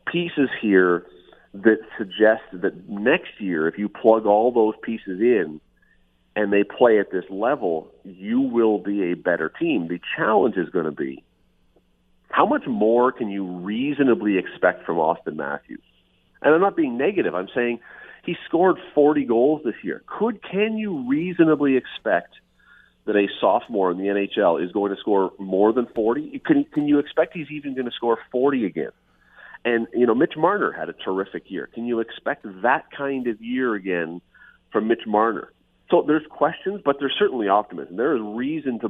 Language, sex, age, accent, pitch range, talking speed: English, male, 40-59, American, 90-130 Hz, 175 wpm